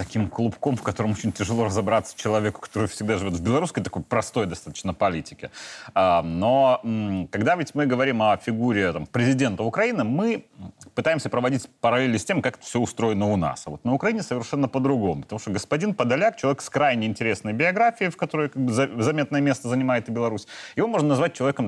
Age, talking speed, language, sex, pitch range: 30-49, 185 wpm, Russian, male, 115-155 Hz